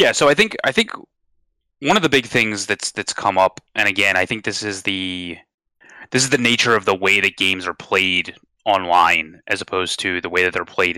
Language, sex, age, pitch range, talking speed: English, male, 20-39, 90-120 Hz, 230 wpm